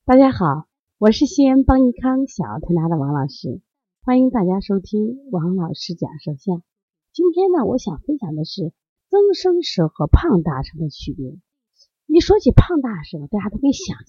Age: 30-49